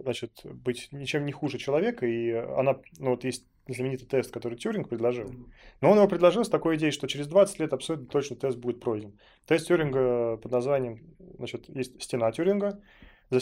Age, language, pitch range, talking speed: 20-39, Russian, 120-150 Hz, 185 wpm